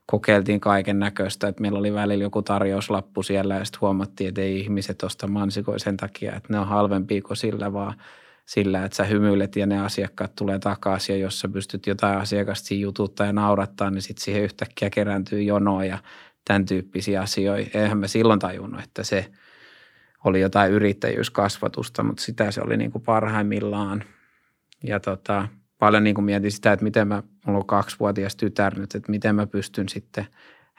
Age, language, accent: 20-39, Finnish, native